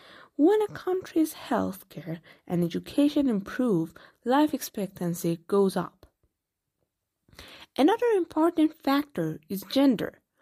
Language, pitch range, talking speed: Persian, 190-280 Hz, 100 wpm